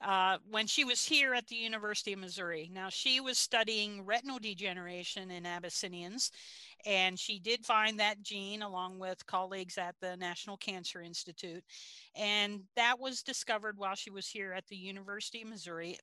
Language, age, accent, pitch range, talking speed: English, 50-69, American, 180-225 Hz, 170 wpm